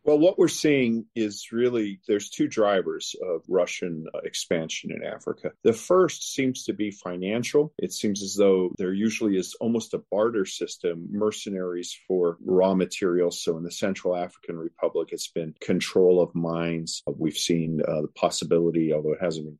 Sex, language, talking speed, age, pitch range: male, English, 170 wpm, 40-59, 90-115 Hz